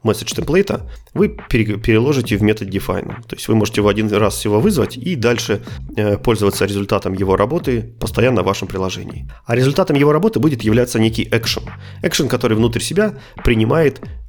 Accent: native